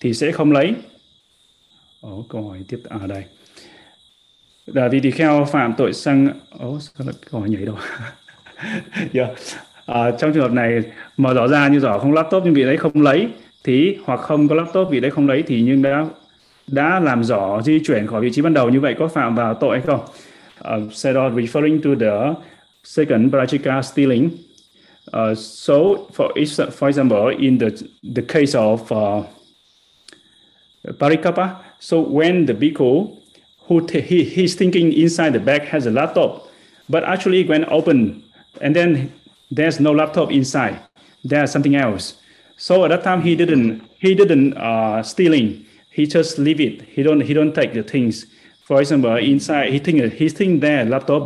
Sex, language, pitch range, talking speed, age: male, Vietnamese, 125-165 Hz, 175 wpm, 20-39